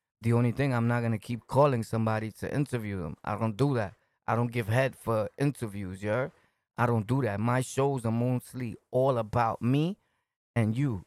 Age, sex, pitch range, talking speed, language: 20-39, male, 120-150 Hz, 200 wpm, English